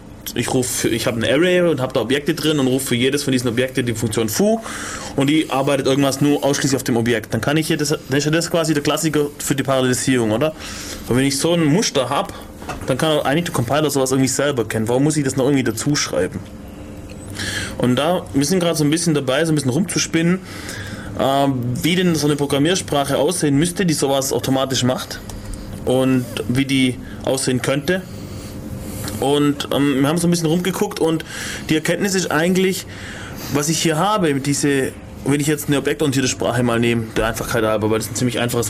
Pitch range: 115-155 Hz